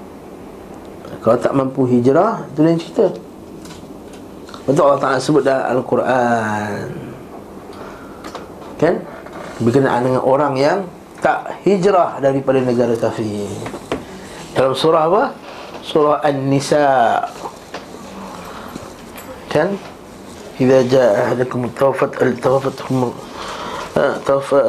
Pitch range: 120-135 Hz